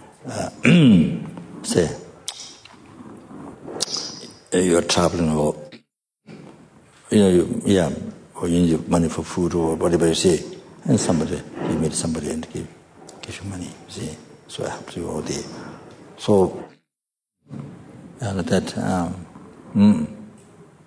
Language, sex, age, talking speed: English, male, 60-79, 125 wpm